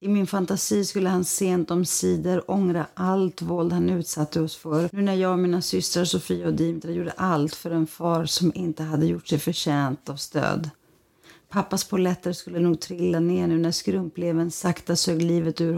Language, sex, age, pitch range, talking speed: Swedish, female, 40-59, 155-185 Hz, 190 wpm